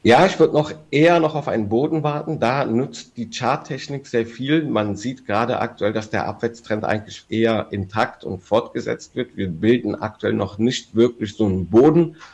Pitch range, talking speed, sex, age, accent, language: 95-115 Hz, 185 wpm, male, 50-69, German, German